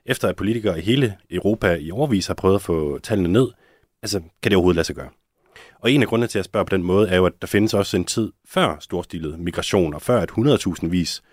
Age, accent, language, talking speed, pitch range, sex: 30-49, native, Danish, 245 wpm, 85-105 Hz, male